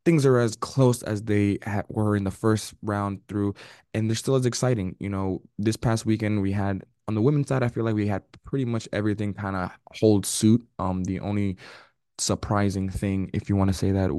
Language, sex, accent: English, male, American